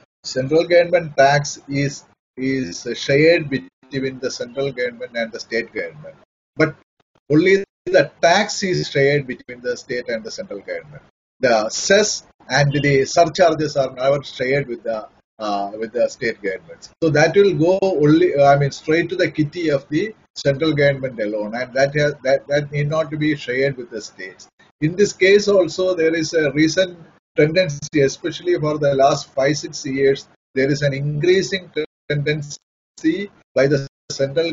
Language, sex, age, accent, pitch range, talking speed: English, male, 30-49, Indian, 135-170 Hz, 165 wpm